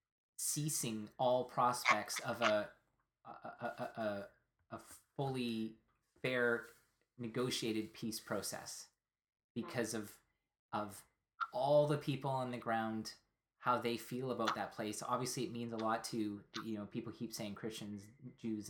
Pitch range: 110-130 Hz